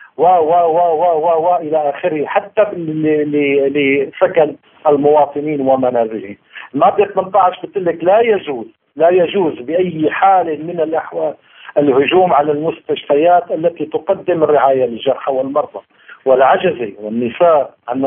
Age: 50-69